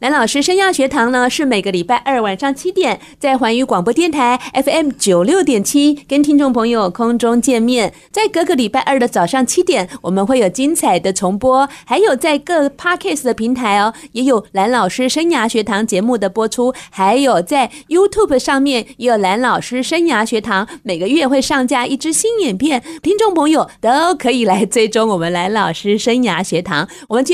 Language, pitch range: Chinese, 205-285 Hz